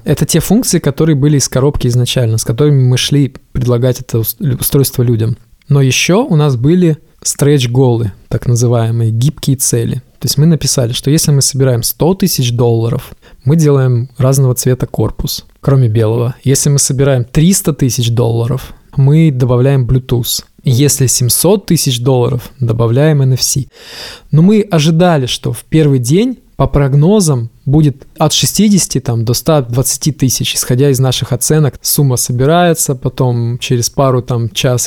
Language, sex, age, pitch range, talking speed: Russian, male, 20-39, 125-150 Hz, 145 wpm